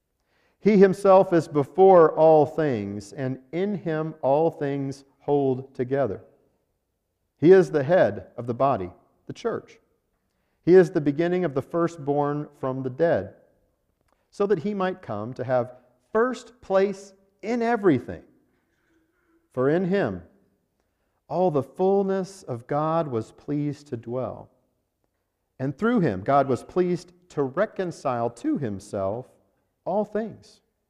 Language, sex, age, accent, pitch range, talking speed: English, male, 50-69, American, 125-195 Hz, 130 wpm